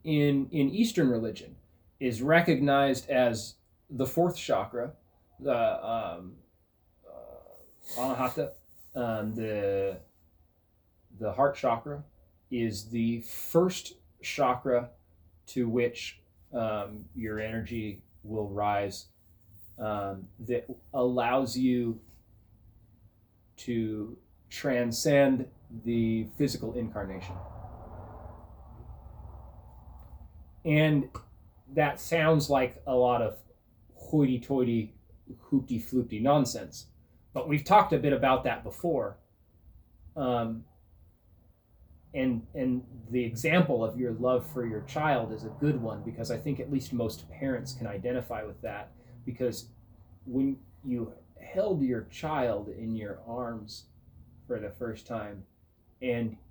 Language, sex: English, male